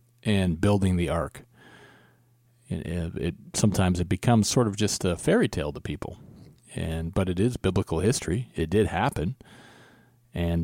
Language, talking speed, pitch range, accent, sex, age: English, 150 wpm, 85-110 Hz, American, male, 40-59